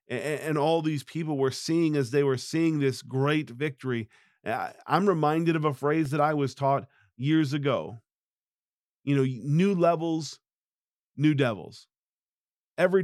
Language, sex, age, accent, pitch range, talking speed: English, male, 40-59, American, 130-155 Hz, 145 wpm